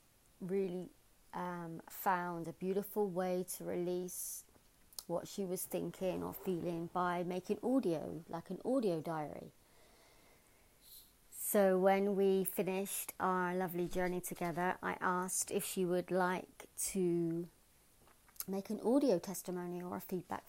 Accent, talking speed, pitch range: British, 125 wpm, 175-195 Hz